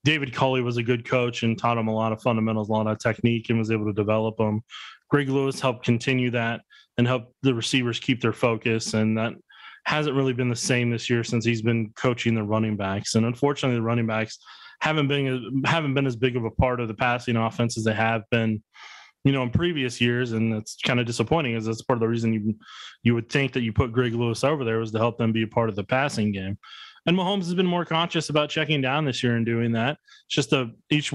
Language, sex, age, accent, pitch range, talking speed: English, male, 20-39, American, 115-135 Hz, 250 wpm